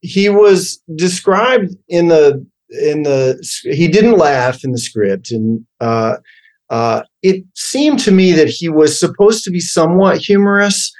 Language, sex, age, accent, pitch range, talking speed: English, male, 40-59, American, 120-175 Hz, 155 wpm